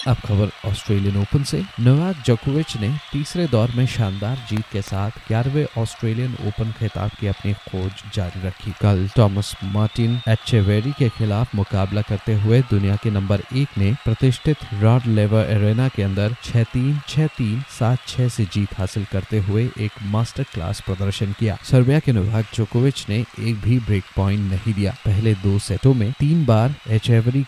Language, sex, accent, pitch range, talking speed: Hindi, male, native, 100-125 Hz, 170 wpm